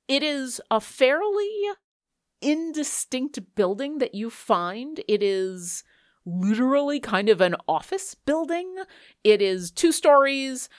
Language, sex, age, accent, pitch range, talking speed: English, female, 30-49, American, 170-245 Hz, 115 wpm